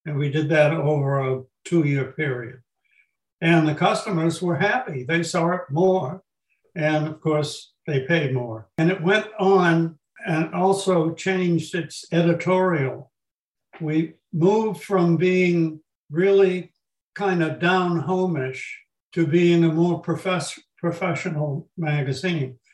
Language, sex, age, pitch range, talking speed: English, male, 60-79, 150-175 Hz, 125 wpm